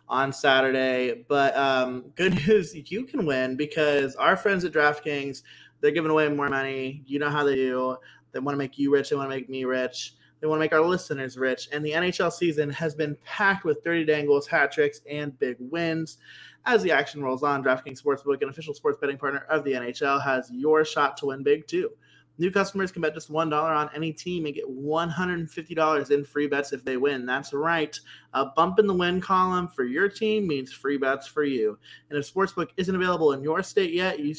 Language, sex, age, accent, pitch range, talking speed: English, male, 20-39, American, 135-165 Hz, 215 wpm